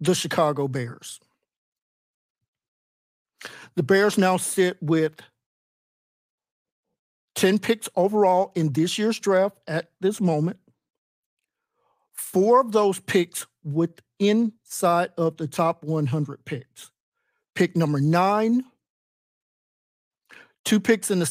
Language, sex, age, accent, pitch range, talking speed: English, male, 50-69, American, 150-190 Hz, 100 wpm